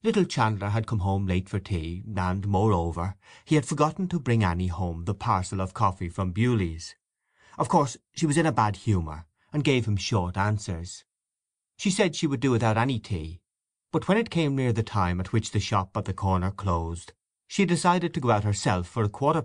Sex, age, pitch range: male, 30-49, 95-125 Hz